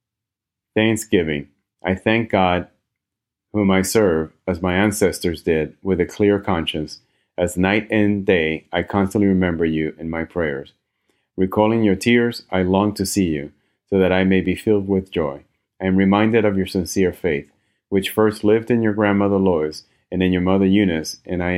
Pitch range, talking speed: 90-105 Hz, 175 wpm